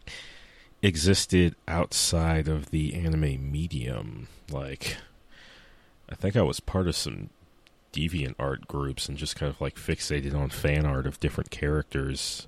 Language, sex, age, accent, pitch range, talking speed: English, male, 30-49, American, 70-80 Hz, 140 wpm